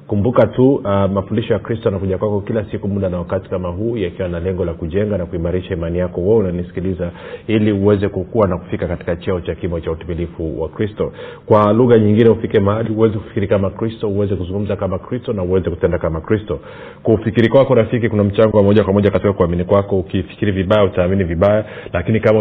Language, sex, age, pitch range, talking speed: Swahili, male, 40-59, 90-110 Hz, 210 wpm